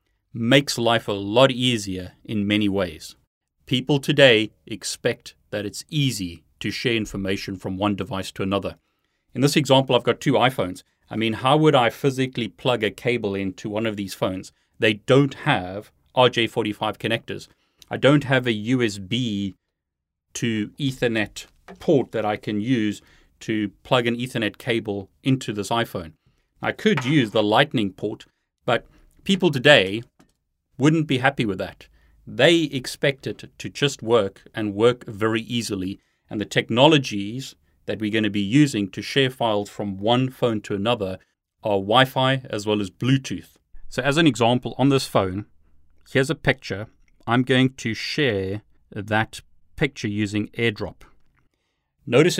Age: 30-49